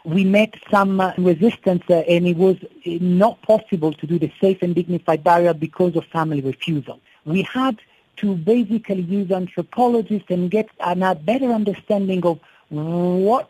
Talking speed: 145 wpm